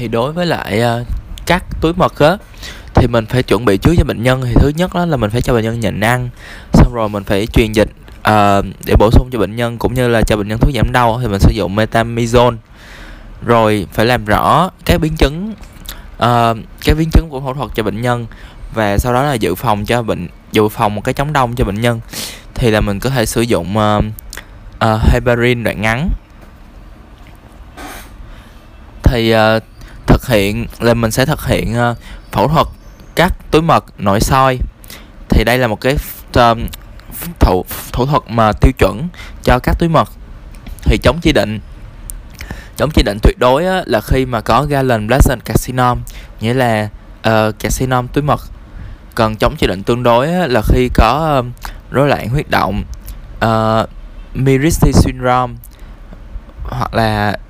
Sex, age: male, 20-39